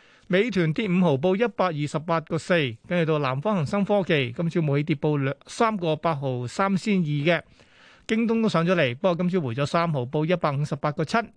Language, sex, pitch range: Chinese, male, 150-190 Hz